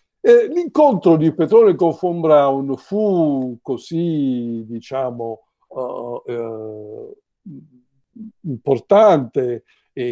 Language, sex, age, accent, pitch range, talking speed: Italian, male, 60-79, native, 125-190 Hz, 85 wpm